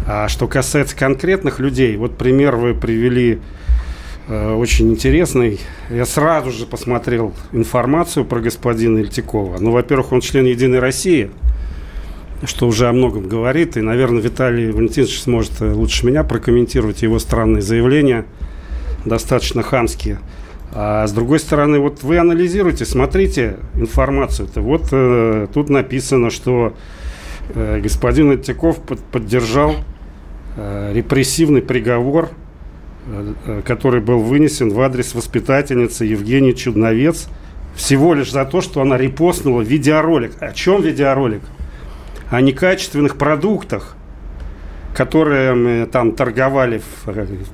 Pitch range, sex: 105-135 Hz, male